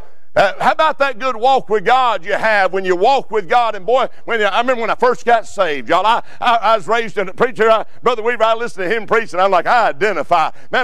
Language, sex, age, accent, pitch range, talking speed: English, male, 50-69, American, 205-260 Hz, 265 wpm